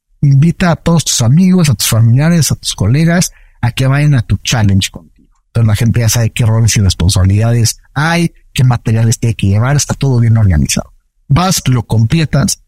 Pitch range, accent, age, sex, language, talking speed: 110-145 Hz, Mexican, 50-69, male, Spanish, 195 wpm